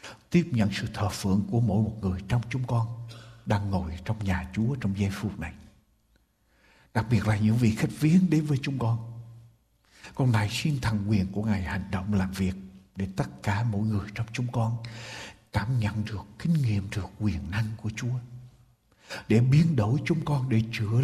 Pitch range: 105-130 Hz